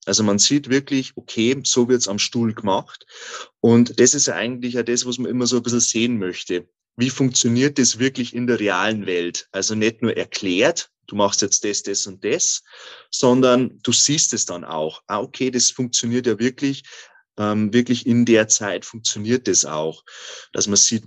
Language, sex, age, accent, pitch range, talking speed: German, male, 30-49, German, 100-120 Hz, 190 wpm